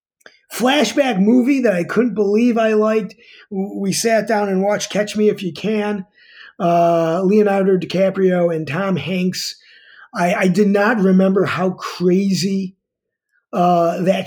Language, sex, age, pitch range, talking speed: English, male, 30-49, 165-200 Hz, 140 wpm